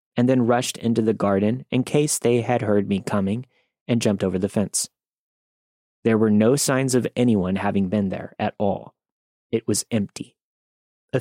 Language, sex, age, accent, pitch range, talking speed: English, male, 30-49, American, 95-115 Hz, 175 wpm